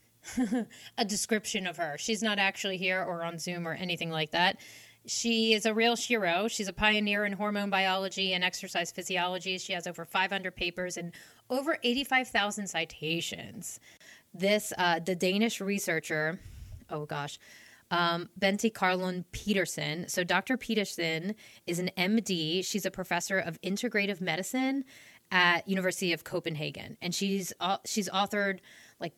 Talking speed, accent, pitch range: 145 wpm, American, 175-220 Hz